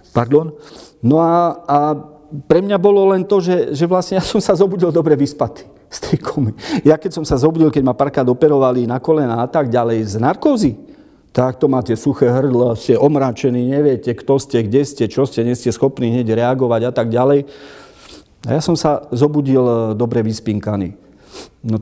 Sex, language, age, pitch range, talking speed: male, Slovak, 40-59, 125-165 Hz, 175 wpm